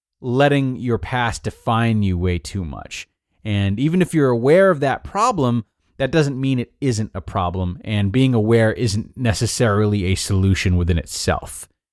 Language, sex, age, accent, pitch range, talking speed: English, male, 30-49, American, 100-130 Hz, 160 wpm